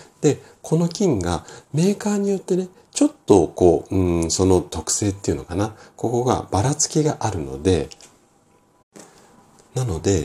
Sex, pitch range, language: male, 75-120 Hz, Japanese